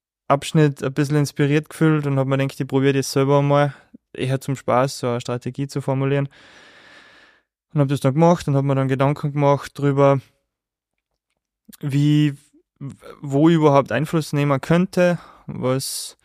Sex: male